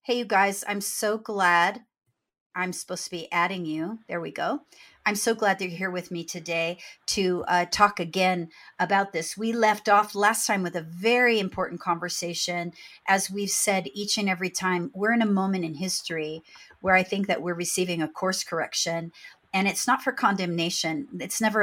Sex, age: female, 50-69